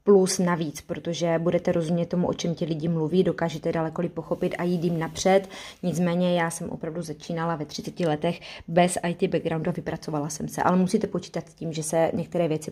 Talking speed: 195 wpm